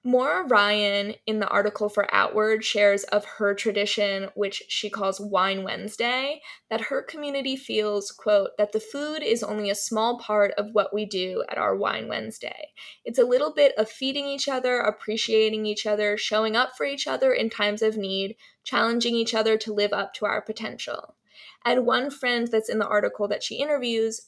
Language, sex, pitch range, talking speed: English, female, 210-250 Hz, 190 wpm